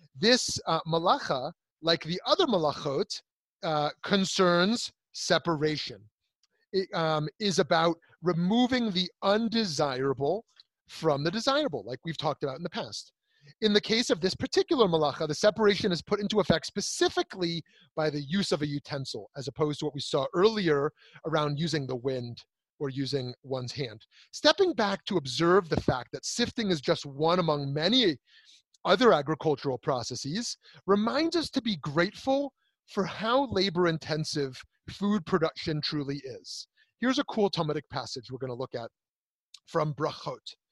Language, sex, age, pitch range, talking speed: English, male, 30-49, 145-195 Hz, 150 wpm